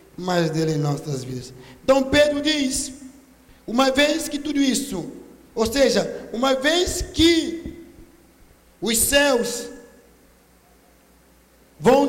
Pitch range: 220-285 Hz